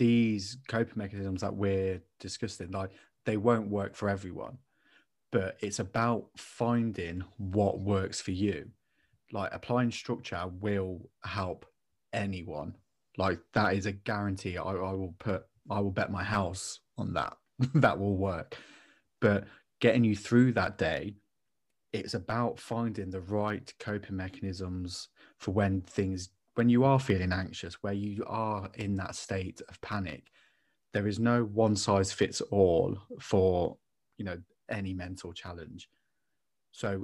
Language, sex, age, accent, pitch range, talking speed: English, male, 20-39, British, 95-115 Hz, 145 wpm